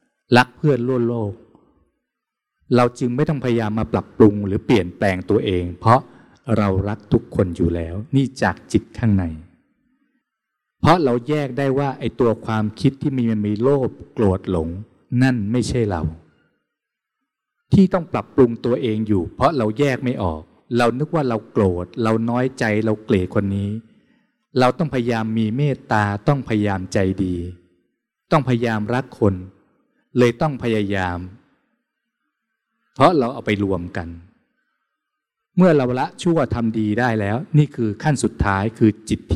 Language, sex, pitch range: Thai, male, 100-130 Hz